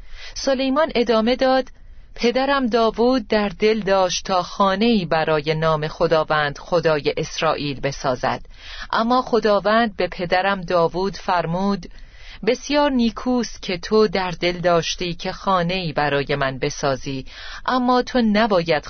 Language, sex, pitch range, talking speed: Persian, female, 160-210 Hz, 115 wpm